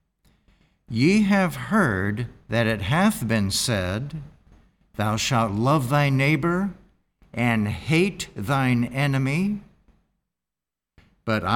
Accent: American